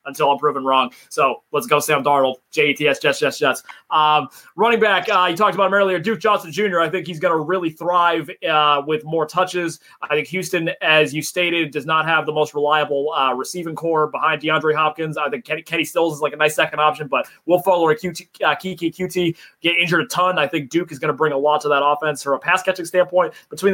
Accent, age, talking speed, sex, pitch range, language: American, 20-39, 235 wpm, male, 145-175 Hz, English